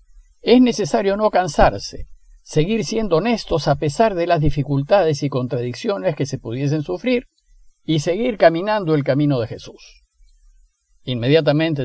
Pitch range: 125-180 Hz